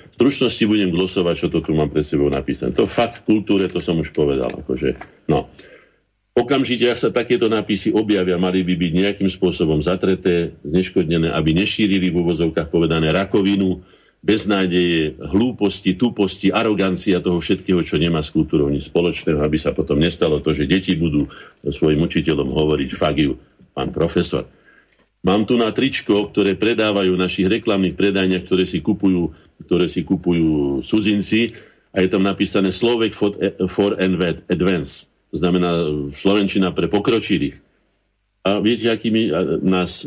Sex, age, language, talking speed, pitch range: male, 50-69, Slovak, 145 wpm, 85-105 Hz